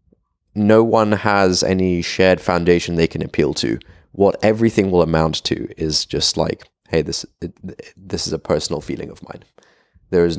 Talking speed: 175 wpm